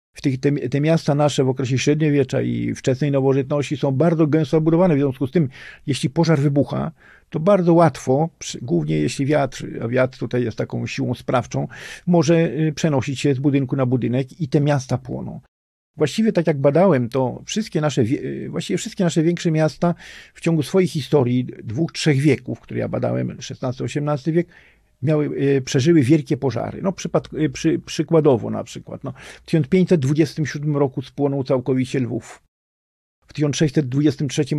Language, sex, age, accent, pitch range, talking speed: Polish, male, 50-69, native, 130-160 Hz, 160 wpm